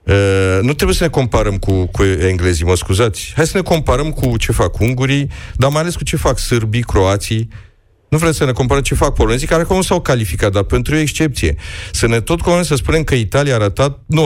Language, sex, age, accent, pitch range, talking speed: Romanian, male, 40-59, native, 95-130 Hz, 230 wpm